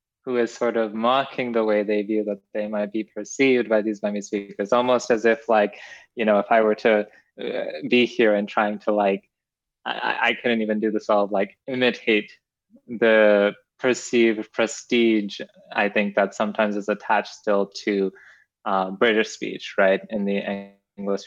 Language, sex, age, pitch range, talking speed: English, male, 20-39, 105-120 Hz, 175 wpm